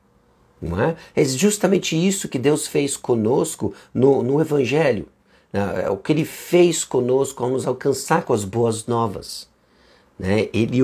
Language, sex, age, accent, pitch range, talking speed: Portuguese, male, 50-69, Brazilian, 100-140 Hz, 140 wpm